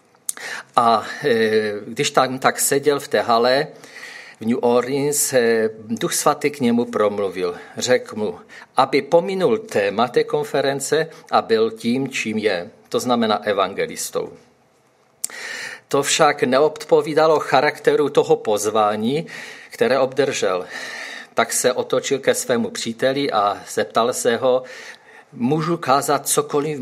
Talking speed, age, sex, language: 115 wpm, 50-69, male, Czech